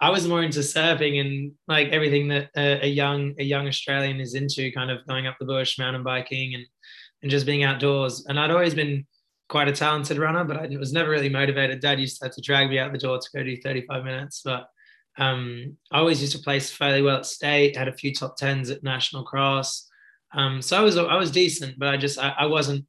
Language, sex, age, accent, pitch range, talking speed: English, male, 20-39, Australian, 130-145 Hz, 240 wpm